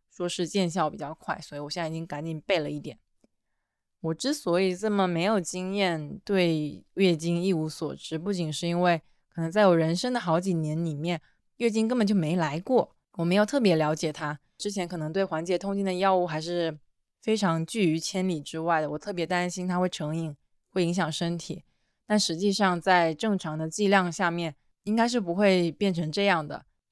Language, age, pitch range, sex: Chinese, 20-39, 160-195 Hz, female